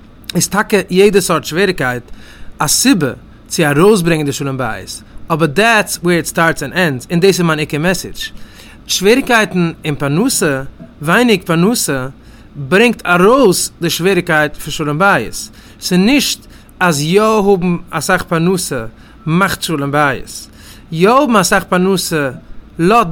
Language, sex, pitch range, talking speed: English, male, 140-195 Hz, 140 wpm